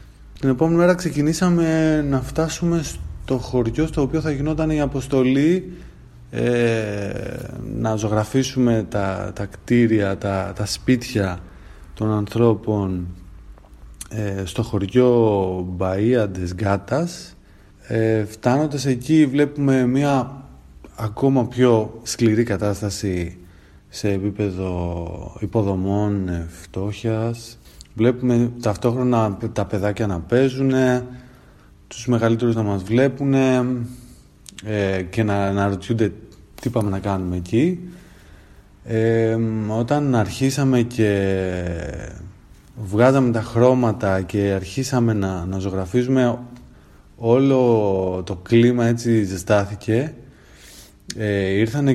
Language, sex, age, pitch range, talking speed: Greek, male, 30-49, 100-125 Hz, 95 wpm